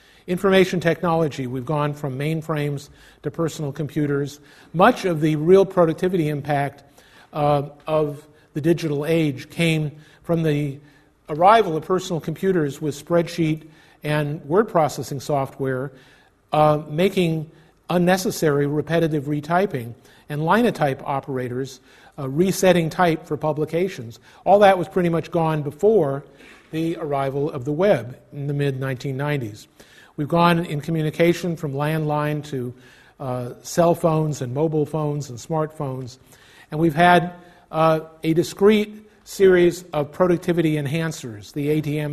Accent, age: American, 40-59